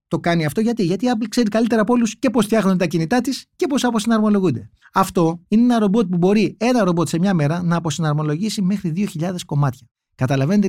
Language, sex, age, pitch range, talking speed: Greek, male, 30-49, 140-195 Hz, 210 wpm